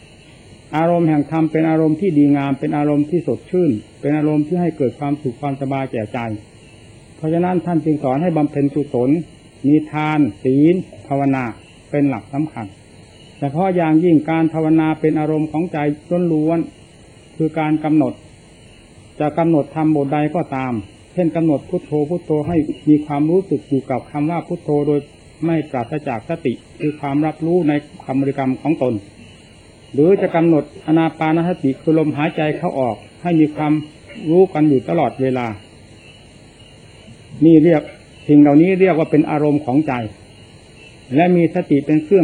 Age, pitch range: 60-79, 135-160 Hz